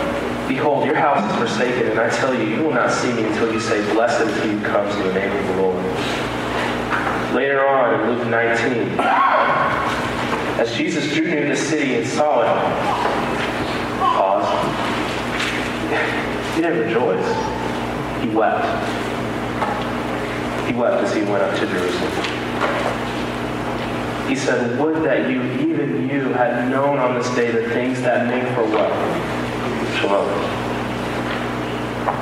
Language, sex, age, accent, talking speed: English, male, 30-49, American, 140 wpm